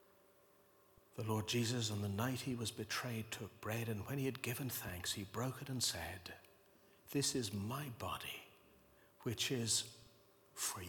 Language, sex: English, male